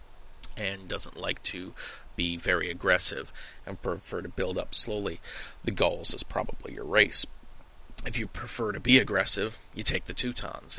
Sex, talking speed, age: male, 160 wpm, 30-49